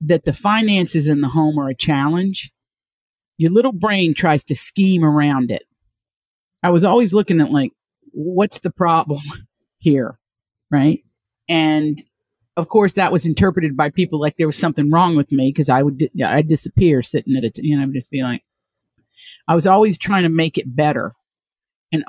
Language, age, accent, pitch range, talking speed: English, 50-69, American, 145-195 Hz, 185 wpm